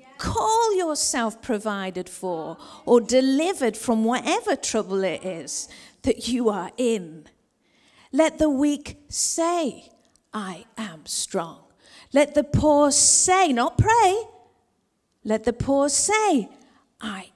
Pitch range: 210-285 Hz